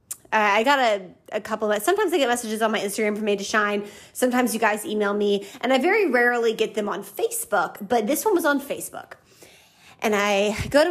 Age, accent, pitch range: 20-39, American, 210-295 Hz